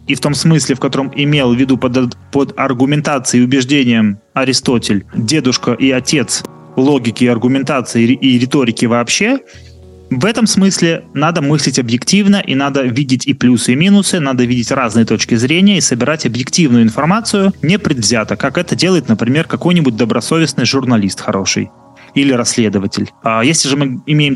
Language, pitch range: English, 120-145 Hz